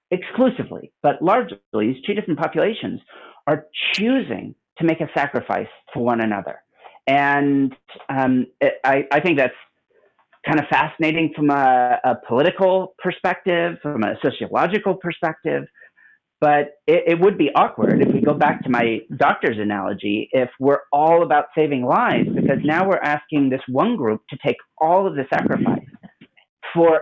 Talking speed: 150 wpm